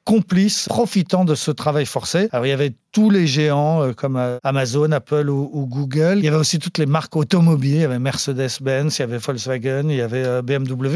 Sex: male